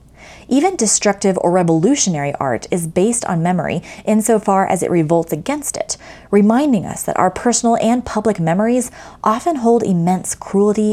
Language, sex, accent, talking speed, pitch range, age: English, female, American, 150 wpm, 160-215 Hz, 20-39